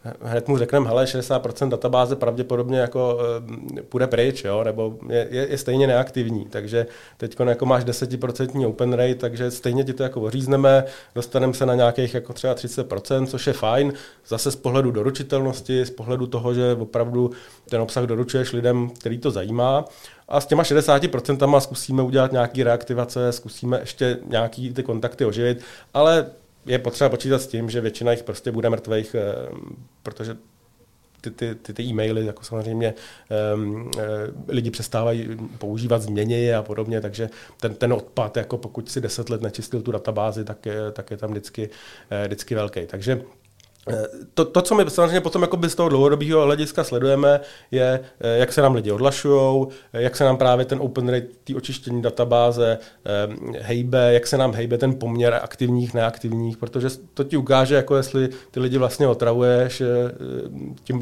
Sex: male